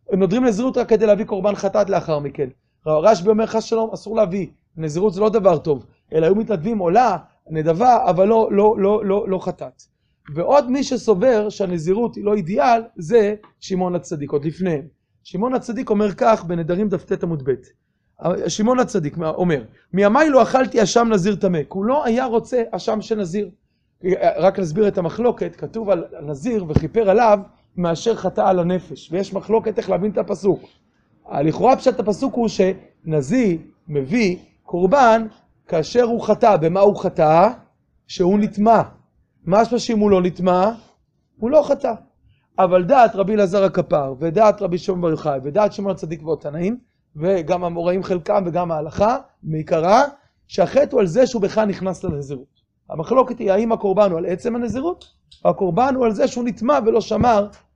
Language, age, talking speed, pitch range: Hebrew, 30-49, 160 wpm, 180-225 Hz